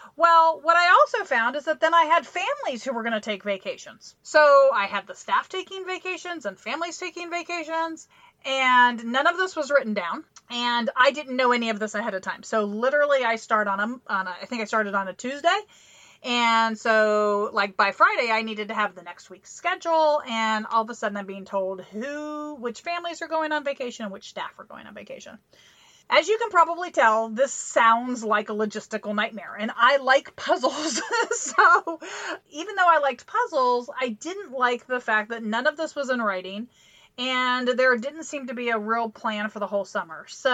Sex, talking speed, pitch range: female, 210 wpm, 220-315 Hz